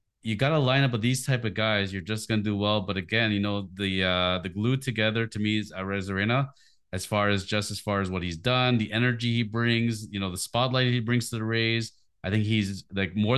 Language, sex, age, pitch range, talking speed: English, male, 30-49, 105-130 Hz, 255 wpm